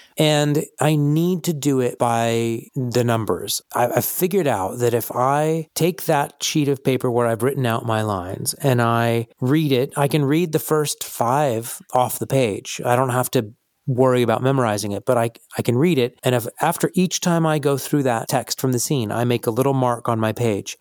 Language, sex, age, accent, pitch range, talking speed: English, male, 40-59, American, 115-145 Hz, 215 wpm